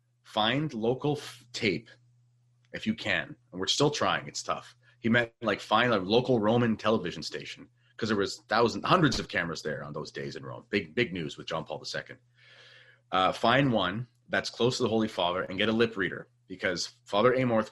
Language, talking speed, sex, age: English, 195 wpm, male, 30-49